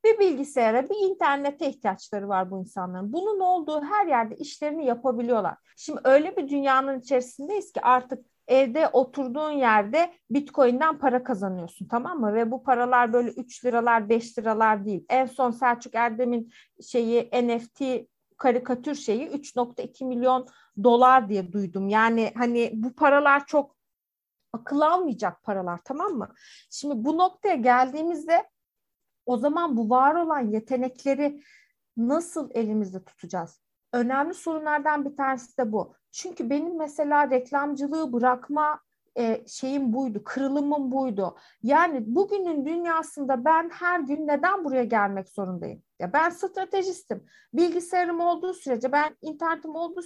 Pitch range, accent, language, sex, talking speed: 240-310 Hz, native, Turkish, female, 130 wpm